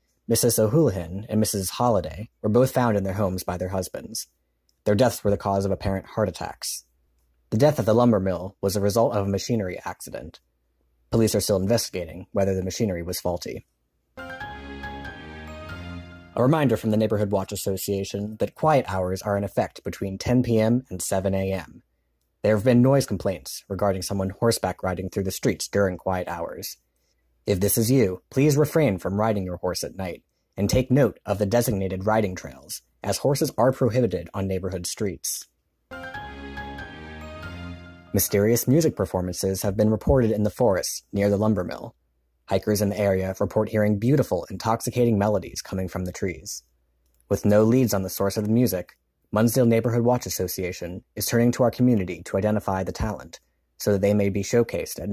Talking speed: 175 wpm